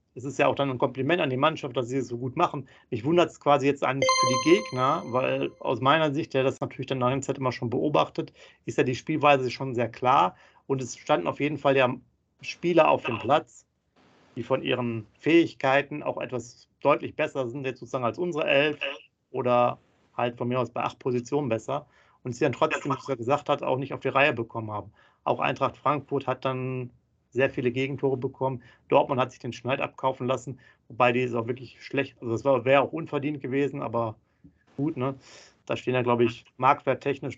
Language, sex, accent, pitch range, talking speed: German, male, German, 120-140 Hz, 215 wpm